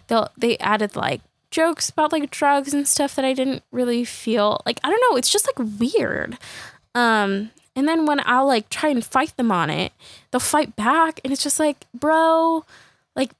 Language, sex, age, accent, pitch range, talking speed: English, female, 10-29, American, 210-285 Hz, 195 wpm